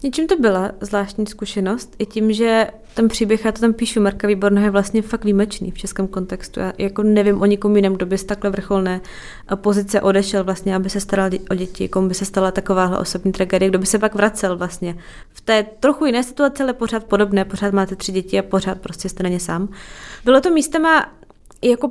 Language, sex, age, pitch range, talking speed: Czech, female, 20-39, 195-215 Hz, 220 wpm